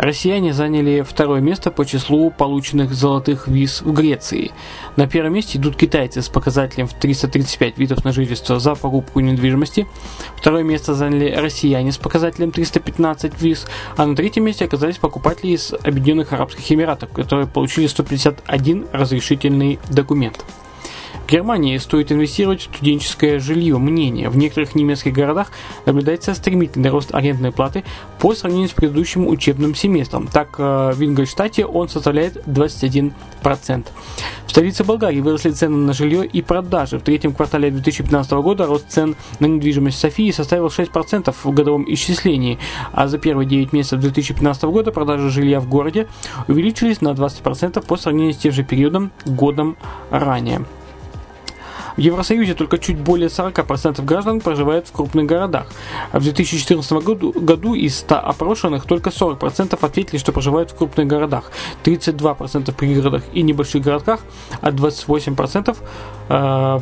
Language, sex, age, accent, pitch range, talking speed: Russian, male, 20-39, native, 140-165 Hz, 145 wpm